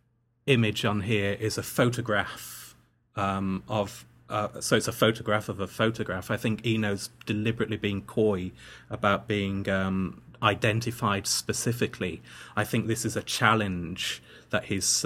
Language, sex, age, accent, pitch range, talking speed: English, male, 30-49, British, 100-120 Hz, 140 wpm